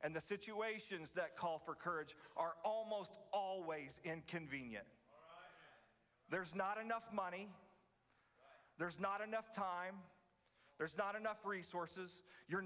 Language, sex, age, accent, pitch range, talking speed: English, male, 40-59, American, 165-200 Hz, 115 wpm